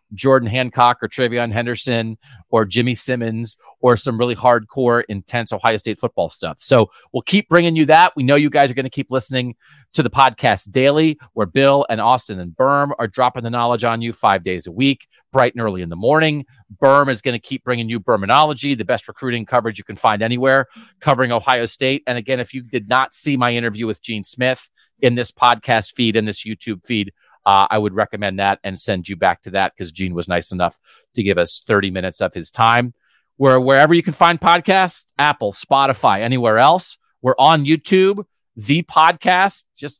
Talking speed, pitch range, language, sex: 205 wpm, 115-150 Hz, English, male